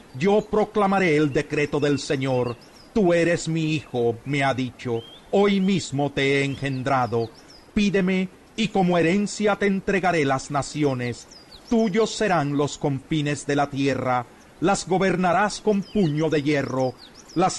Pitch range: 140-195 Hz